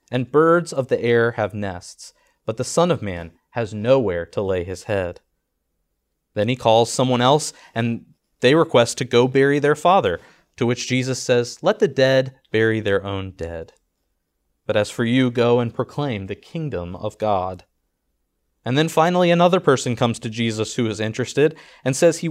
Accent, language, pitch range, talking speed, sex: American, English, 105-135 Hz, 180 wpm, male